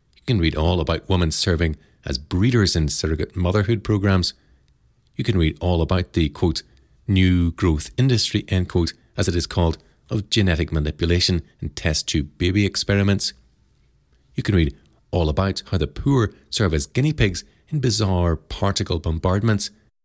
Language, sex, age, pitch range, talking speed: English, male, 40-59, 85-115 Hz, 155 wpm